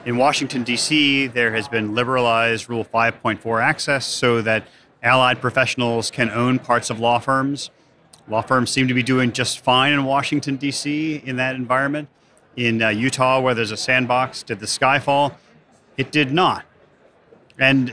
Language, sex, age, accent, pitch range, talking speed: English, male, 40-59, American, 115-140 Hz, 165 wpm